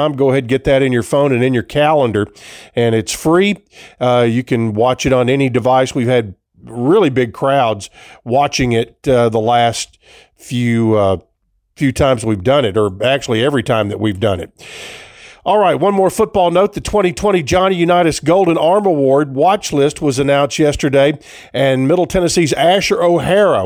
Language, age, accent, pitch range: English, 50-69, American, 120-165 Hz